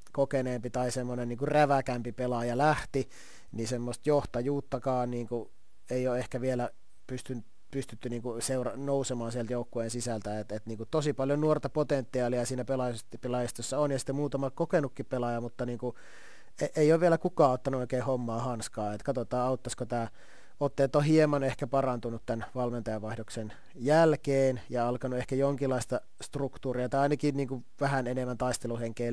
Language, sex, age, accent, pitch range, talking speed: Finnish, male, 30-49, native, 120-135 Hz, 145 wpm